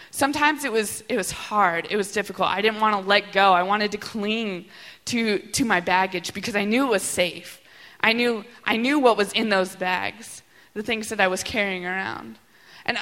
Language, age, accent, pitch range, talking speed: English, 20-39, American, 195-245 Hz, 210 wpm